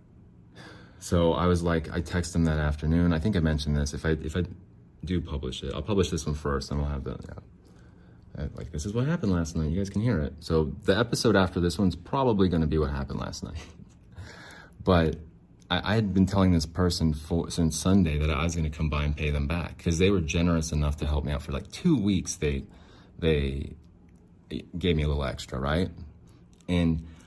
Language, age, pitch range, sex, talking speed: English, 30-49, 75-90 Hz, male, 225 wpm